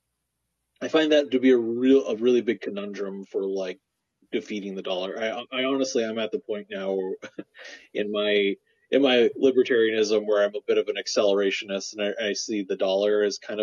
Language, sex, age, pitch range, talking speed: English, male, 30-49, 95-140 Hz, 200 wpm